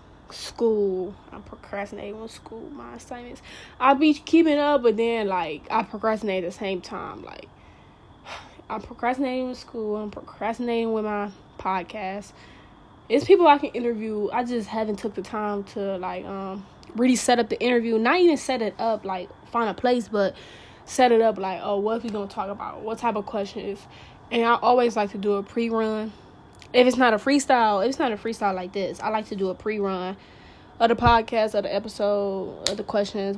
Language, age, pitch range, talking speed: English, 10-29, 200-240 Hz, 195 wpm